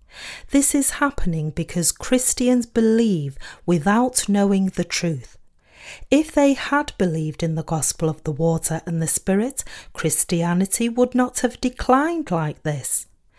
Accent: British